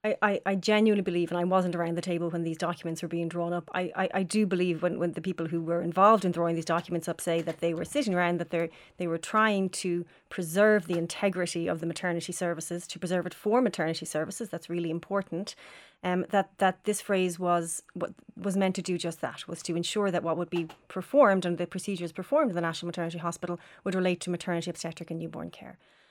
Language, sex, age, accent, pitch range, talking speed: English, female, 30-49, Irish, 175-195 Hz, 230 wpm